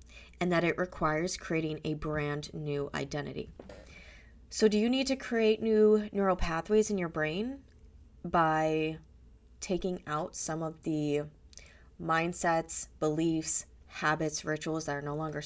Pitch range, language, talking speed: 150-185 Hz, English, 135 wpm